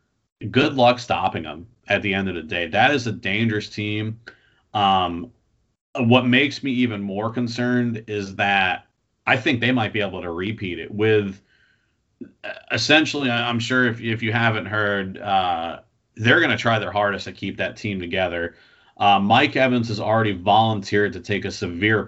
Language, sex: English, male